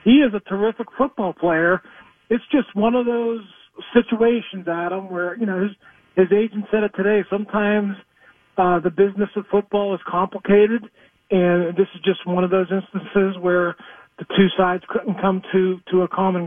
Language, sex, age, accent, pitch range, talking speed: English, male, 40-59, American, 175-200 Hz, 175 wpm